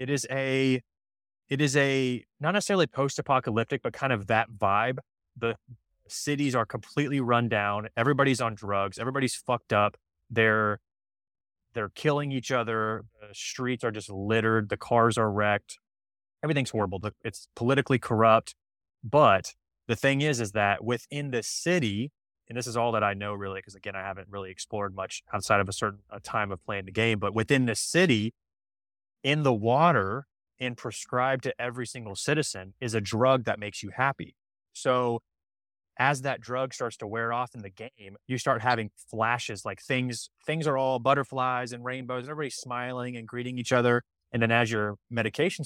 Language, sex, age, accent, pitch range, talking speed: English, male, 20-39, American, 105-130 Hz, 170 wpm